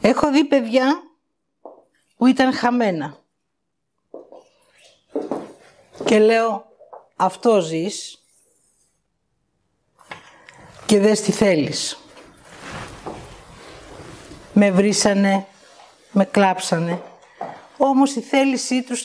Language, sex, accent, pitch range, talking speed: Greek, female, native, 195-250 Hz, 70 wpm